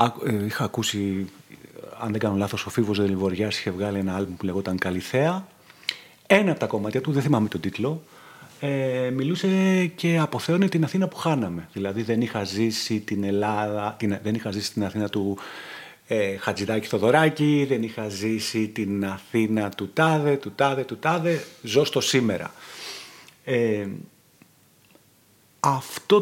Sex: male